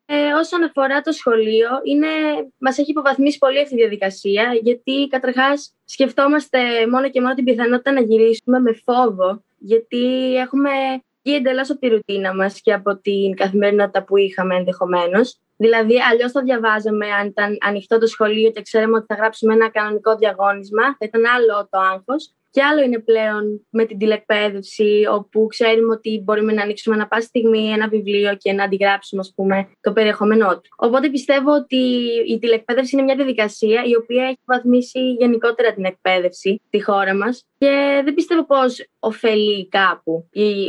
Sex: female